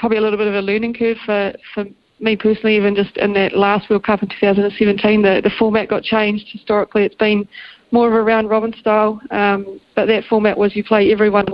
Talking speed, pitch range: 225 wpm, 200-220 Hz